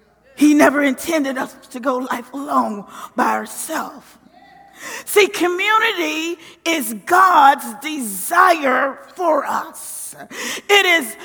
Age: 40-59